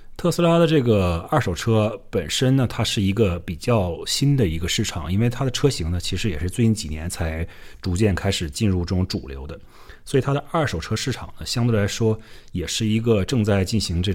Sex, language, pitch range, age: male, Chinese, 85-115 Hz, 30-49